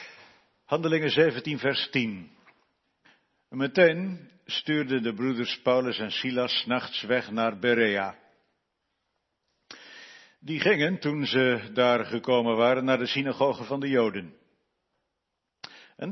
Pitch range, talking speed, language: 115-140 Hz, 110 wpm, Dutch